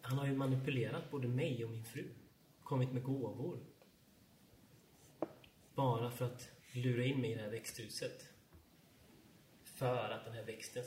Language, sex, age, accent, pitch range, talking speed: Swedish, male, 30-49, native, 115-135 Hz, 150 wpm